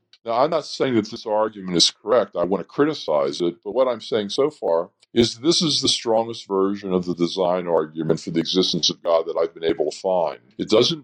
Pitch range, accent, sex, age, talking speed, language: 85-115 Hz, American, female, 50-69, 235 wpm, English